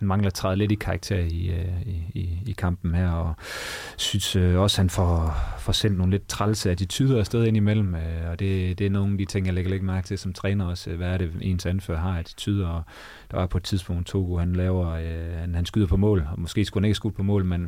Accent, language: native, Danish